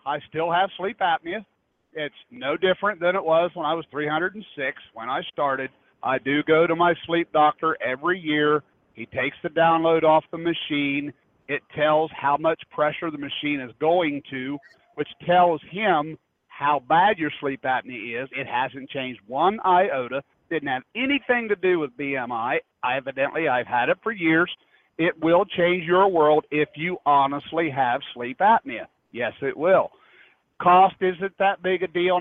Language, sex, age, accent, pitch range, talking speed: English, male, 50-69, American, 150-200 Hz, 170 wpm